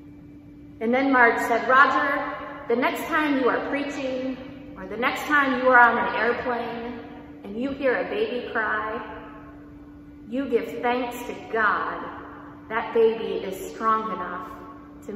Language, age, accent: English, 30-49, American